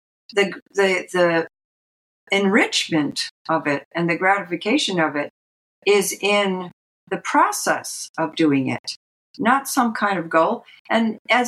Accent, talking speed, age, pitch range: American, 130 wpm, 60-79, 170-245 Hz